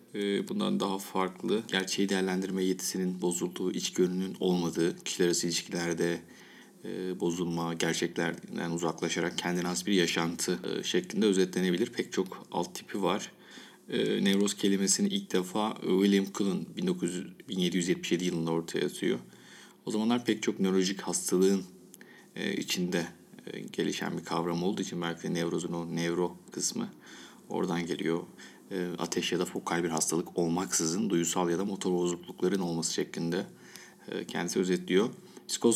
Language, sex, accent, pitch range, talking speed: Turkish, male, native, 85-100 Hz, 125 wpm